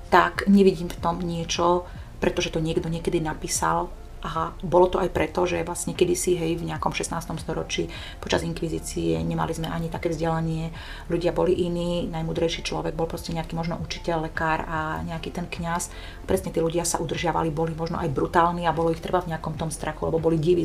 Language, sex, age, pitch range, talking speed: Slovak, female, 30-49, 155-175 Hz, 190 wpm